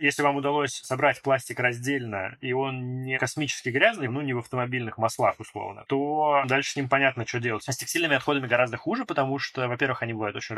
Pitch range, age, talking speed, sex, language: 115-135 Hz, 20-39, 205 wpm, male, Russian